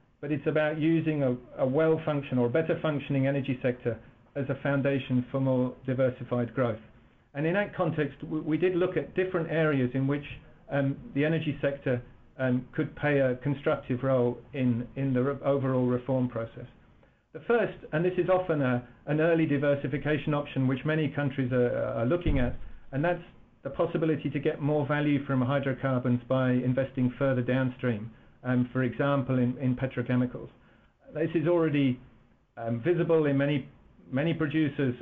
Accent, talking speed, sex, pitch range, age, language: British, 165 wpm, male, 125-150 Hz, 50-69, English